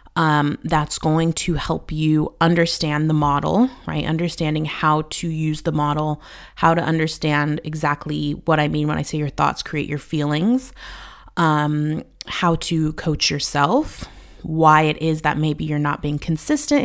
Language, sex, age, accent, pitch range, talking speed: English, female, 20-39, American, 150-175 Hz, 160 wpm